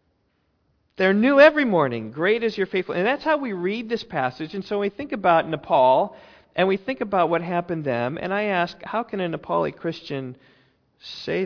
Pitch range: 120-175 Hz